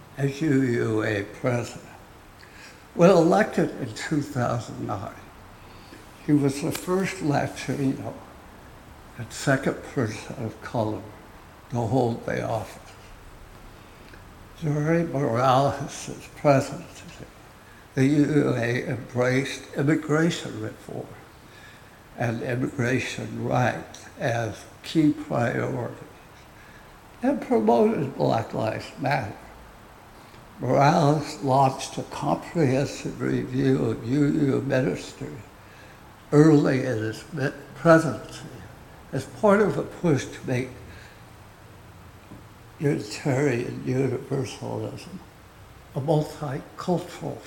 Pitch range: 110-150 Hz